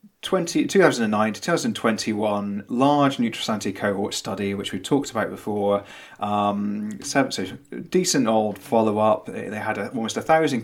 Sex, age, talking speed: male, 30-49, 135 wpm